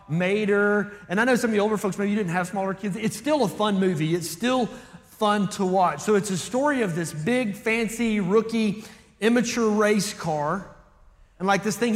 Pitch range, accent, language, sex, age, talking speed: 165-210 Hz, American, English, male, 30-49, 205 wpm